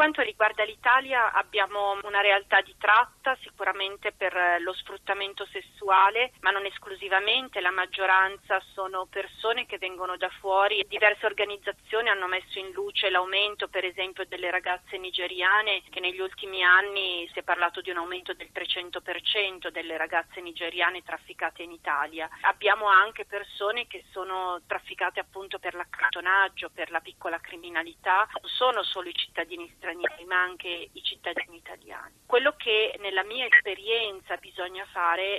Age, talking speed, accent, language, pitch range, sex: 30-49, 145 wpm, native, Italian, 180-210 Hz, female